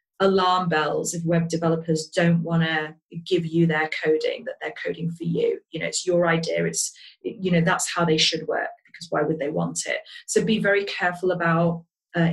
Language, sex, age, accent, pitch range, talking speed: English, female, 30-49, British, 165-190 Hz, 205 wpm